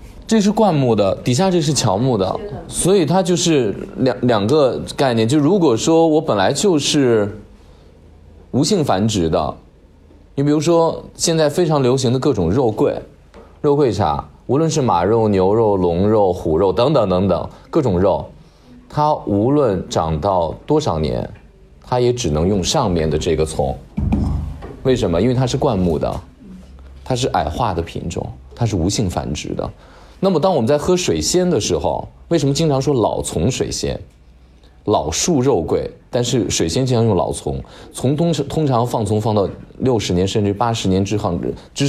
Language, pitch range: Chinese, 90-145 Hz